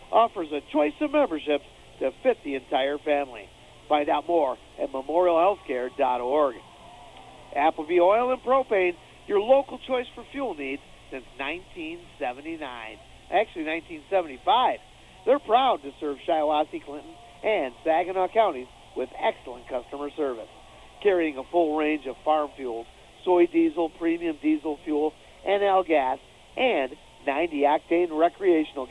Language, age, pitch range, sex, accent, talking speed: English, 50-69, 140-190 Hz, male, American, 120 wpm